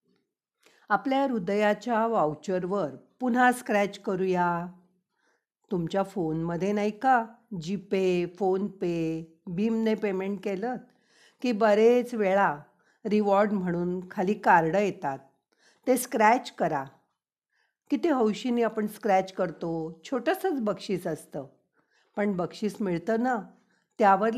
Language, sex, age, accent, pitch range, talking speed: Marathi, female, 50-69, native, 175-230 Hz, 95 wpm